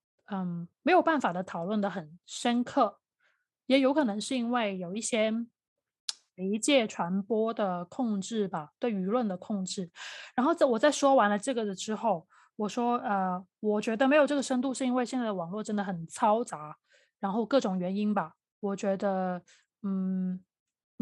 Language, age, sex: Chinese, 20-39, female